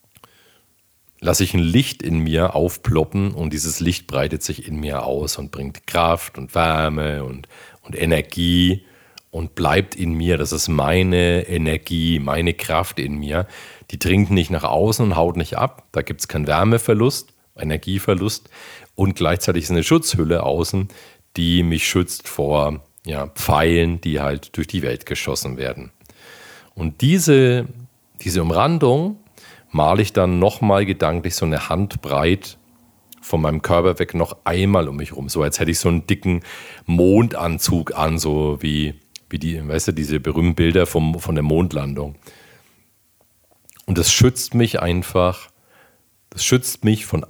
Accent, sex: German, male